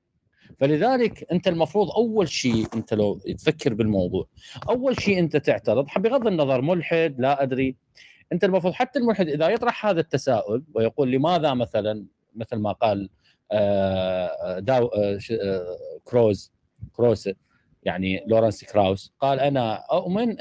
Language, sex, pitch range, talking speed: Arabic, male, 120-180 Hz, 130 wpm